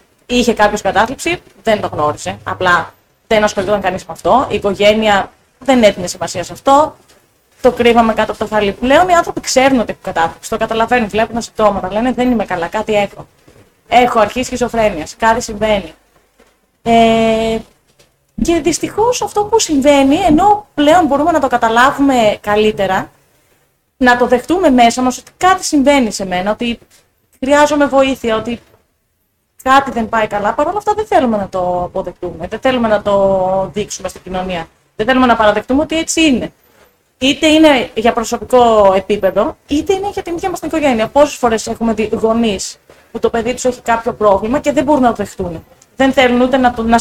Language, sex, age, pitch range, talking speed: Greek, female, 20-39, 210-285 Hz, 170 wpm